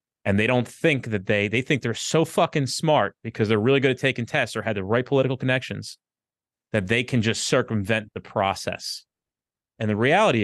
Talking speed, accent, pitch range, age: 200 wpm, American, 100-130 Hz, 30-49